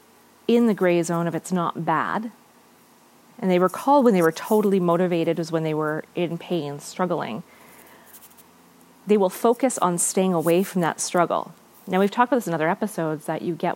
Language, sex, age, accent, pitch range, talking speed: English, female, 40-59, American, 170-210 Hz, 190 wpm